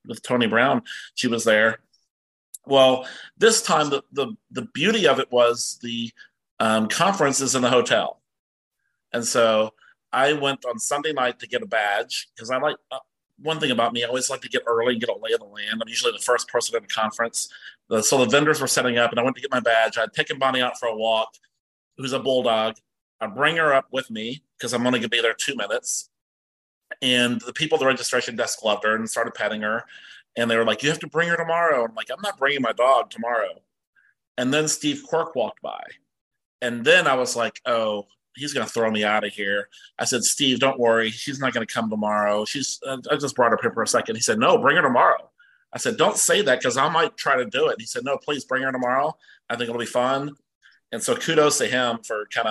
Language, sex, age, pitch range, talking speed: English, male, 30-49, 115-140 Hz, 240 wpm